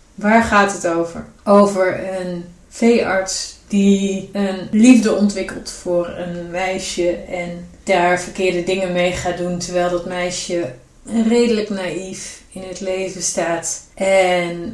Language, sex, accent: Dutch, female, Dutch